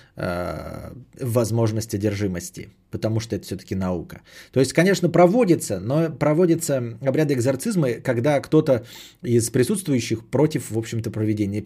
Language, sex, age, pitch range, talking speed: Bulgarian, male, 20-39, 105-155 Hz, 120 wpm